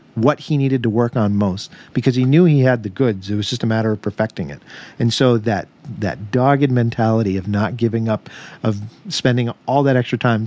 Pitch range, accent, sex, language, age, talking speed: 110-140 Hz, American, male, English, 40-59, 220 wpm